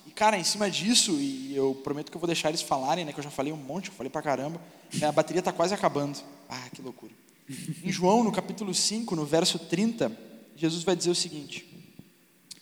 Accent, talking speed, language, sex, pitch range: Brazilian, 215 wpm, Portuguese, male, 155-200 Hz